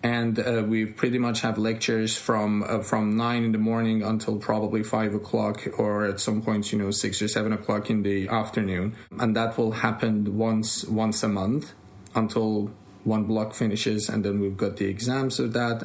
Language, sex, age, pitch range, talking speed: English, male, 20-39, 105-115 Hz, 195 wpm